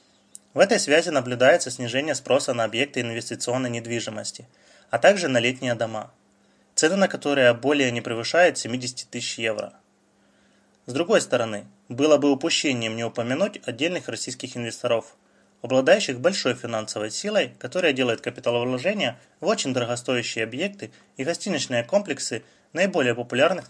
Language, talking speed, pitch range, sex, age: Russian, 130 wpm, 115-140 Hz, male, 20-39